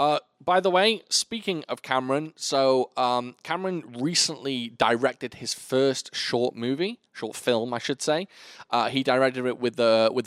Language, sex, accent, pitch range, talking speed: English, male, British, 110-150 Hz, 165 wpm